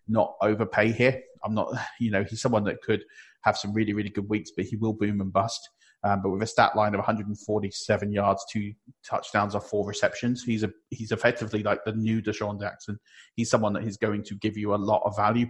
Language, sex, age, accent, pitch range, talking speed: English, male, 30-49, British, 100-110 Hz, 225 wpm